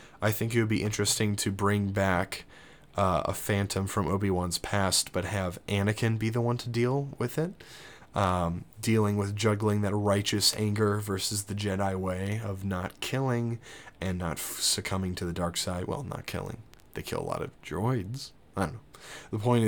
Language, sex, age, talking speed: English, male, 20-39, 185 wpm